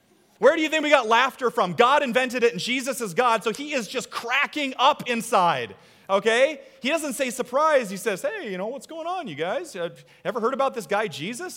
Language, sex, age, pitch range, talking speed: English, male, 30-49, 140-230 Hz, 225 wpm